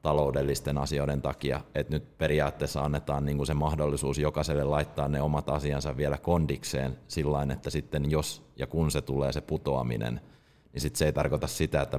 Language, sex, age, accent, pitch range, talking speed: Finnish, male, 30-49, native, 70-80 Hz, 170 wpm